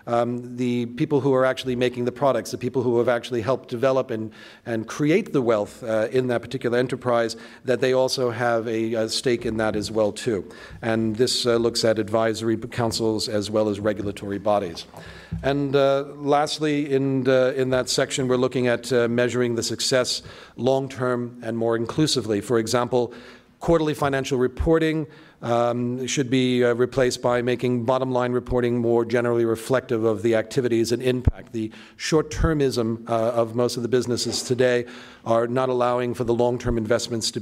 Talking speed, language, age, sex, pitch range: 170 wpm, English, 40-59, male, 115-130 Hz